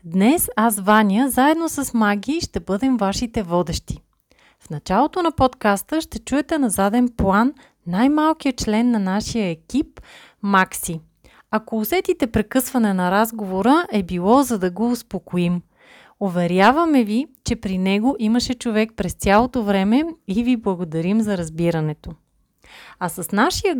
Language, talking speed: Bulgarian, 140 wpm